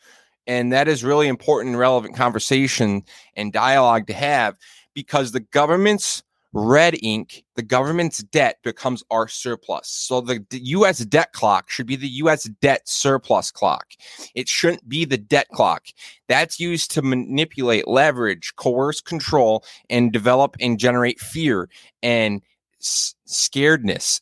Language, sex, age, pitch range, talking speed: English, male, 30-49, 120-150 Hz, 140 wpm